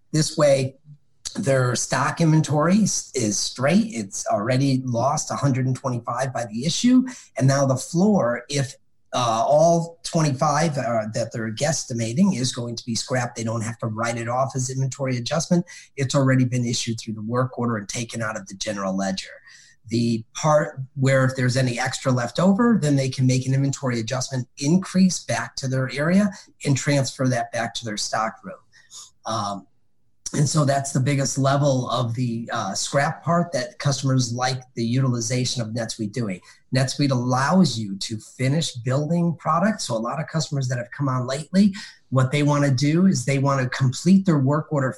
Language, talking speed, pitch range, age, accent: English, 180 wpm, 120-150 Hz, 40-59, American